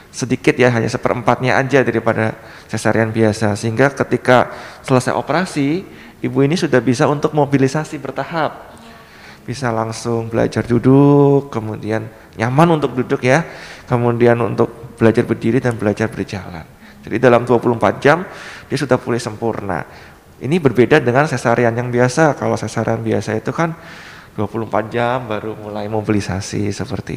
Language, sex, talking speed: Indonesian, male, 135 wpm